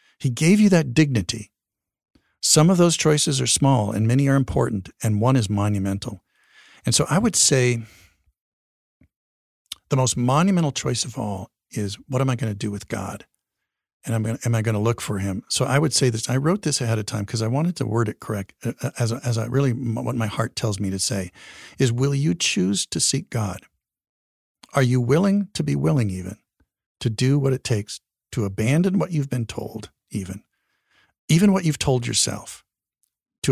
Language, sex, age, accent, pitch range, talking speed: English, male, 50-69, American, 105-140 Hz, 195 wpm